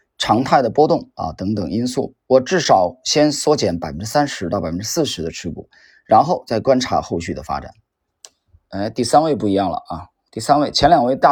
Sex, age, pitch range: male, 20-39, 110-155 Hz